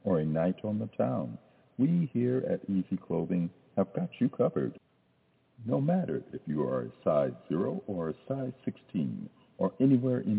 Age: 60-79